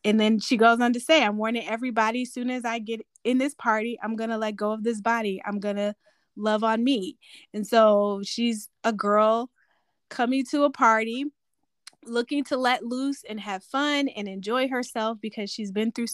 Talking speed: 205 wpm